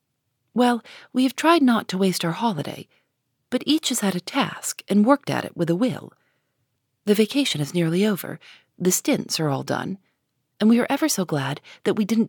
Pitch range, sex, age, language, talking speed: 160-230 Hz, female, 40-59, English, 200 wpm